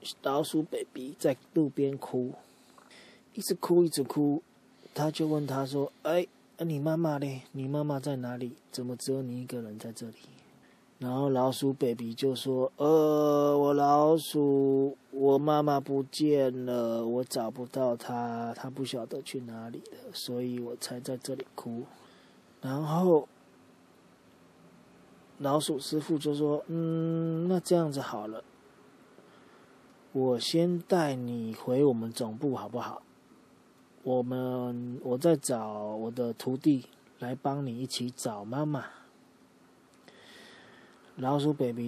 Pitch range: 120-145 Hz